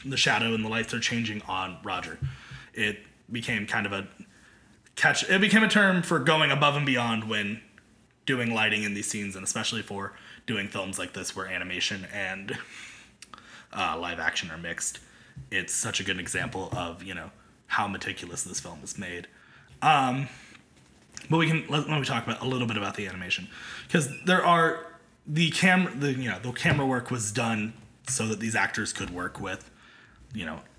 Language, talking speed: English, 185 wpm